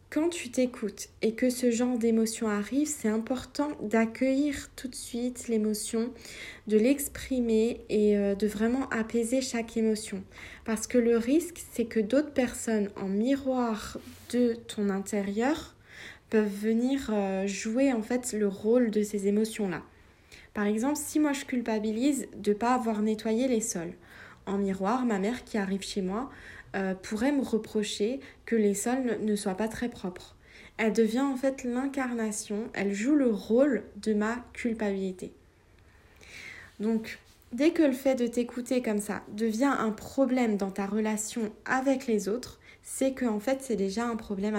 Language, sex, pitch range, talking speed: French, female, 205-245 Hz, 160 wpm